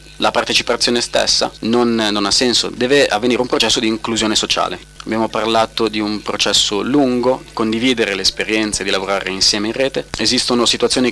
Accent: native